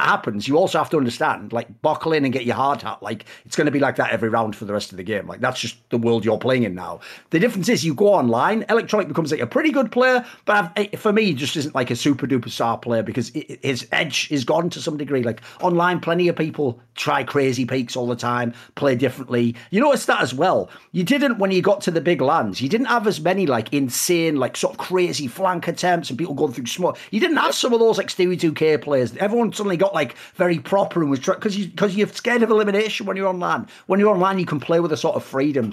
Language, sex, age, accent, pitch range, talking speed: English, male, 40-59, British, 125-195 Hz, 265 wpm